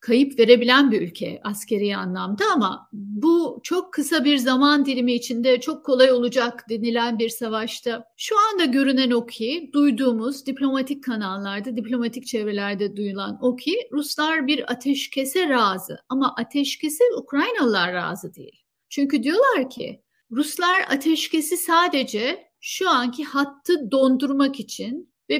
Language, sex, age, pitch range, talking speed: Turkish, female, 60-79, 215-295 Hz, 130 wpm